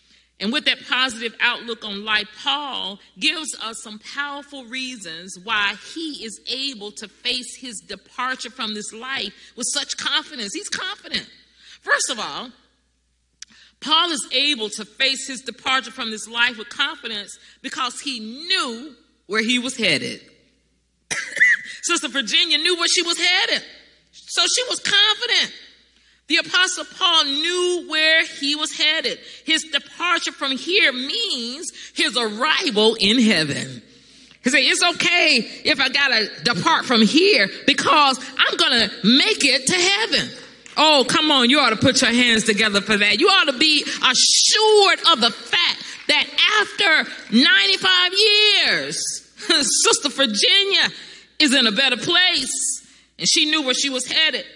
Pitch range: 235-330 Hz